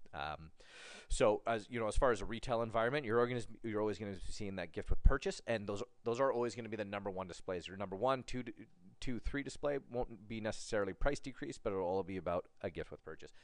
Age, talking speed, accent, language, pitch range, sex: 30-49, 250 wpm, American, English, 100-130 Hz, male